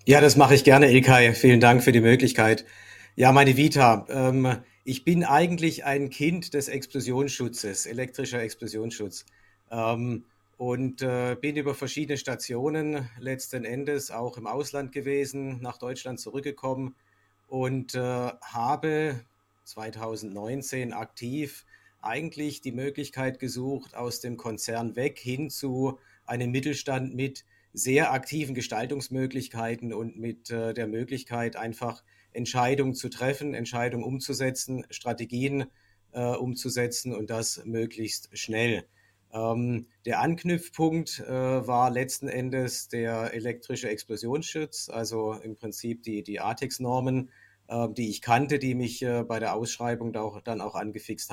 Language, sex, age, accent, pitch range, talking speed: German, male, 50-69, German, 115-135 Hz, 120 wpm